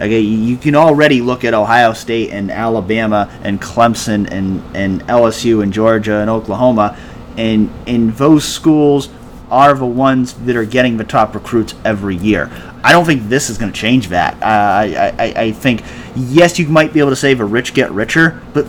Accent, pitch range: American, 105-130 Hz